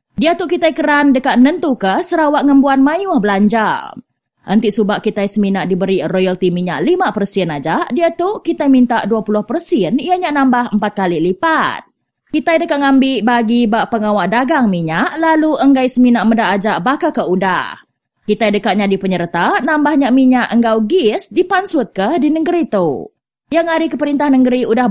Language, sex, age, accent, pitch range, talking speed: English, female, 20-39, Indonesian, 200-275 Hz, 160 wpm